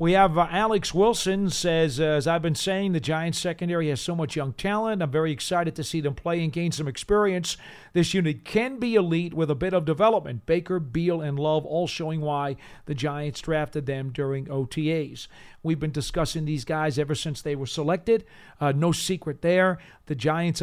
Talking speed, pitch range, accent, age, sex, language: 195 wpm, 150-175 Hz, American, 40-59, male, English